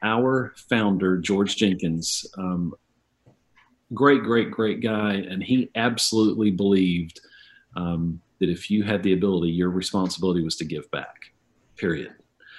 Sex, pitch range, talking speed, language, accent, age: male, 90-115 Hz, 130 wpm, English, American, 40-59